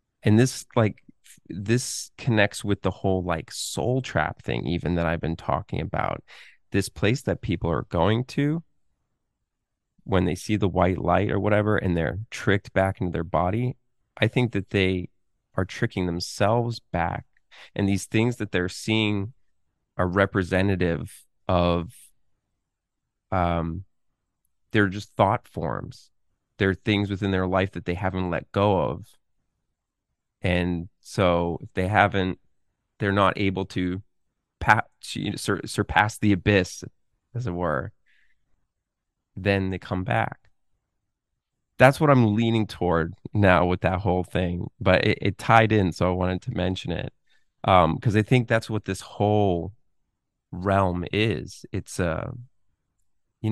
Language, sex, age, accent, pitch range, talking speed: English, male, 20-39, American, 90-110 Hz, 140 wpm